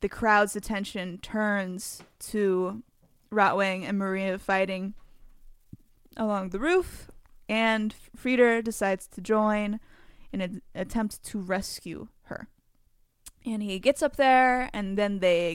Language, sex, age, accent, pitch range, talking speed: English, female, 10-29, American, 195-235 Hz, 120 wpm